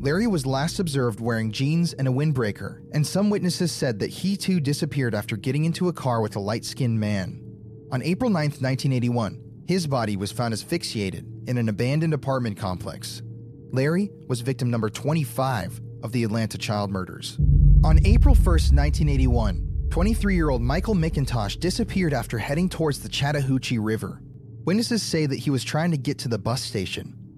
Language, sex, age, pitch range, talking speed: English, male, 30-49, 110-150 Hz, 175 wpm